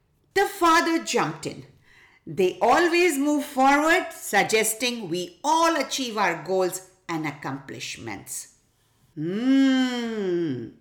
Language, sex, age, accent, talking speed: English, female, 50-69, Indian, 95 wpm